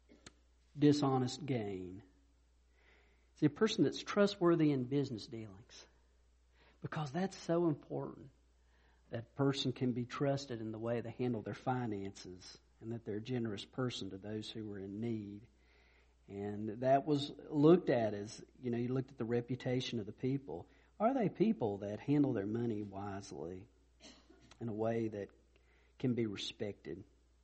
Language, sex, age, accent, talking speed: English, male, 50-69, American, 150 wpm